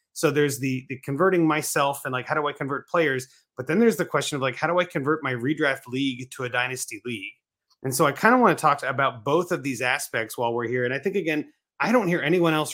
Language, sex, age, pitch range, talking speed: English, male, 30-49, 125-155 Hz, 265 wpm